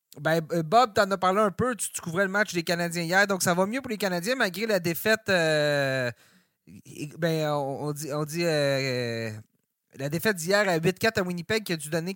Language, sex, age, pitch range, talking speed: French, male, 30-49, 140-205 Hz, 220 wpm